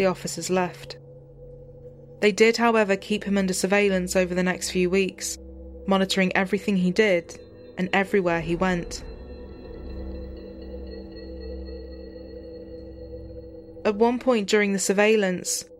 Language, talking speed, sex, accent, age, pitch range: English, 110 wpm, female, British, 20-39, 170-200 Hz